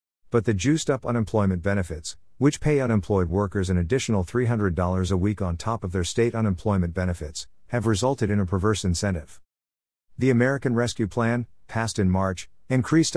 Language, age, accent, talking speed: English, 50-69, American, 160 wpm